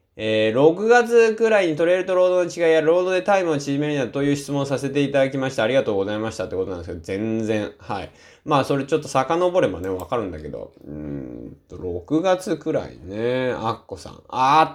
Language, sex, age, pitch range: Japanese, male, 20-39, 105-140 Hz